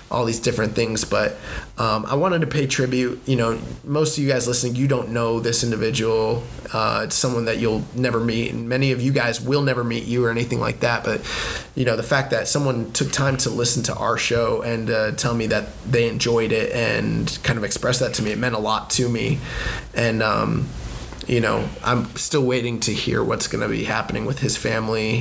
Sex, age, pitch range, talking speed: male, 20-39, 110-125 Hz, 225 wpm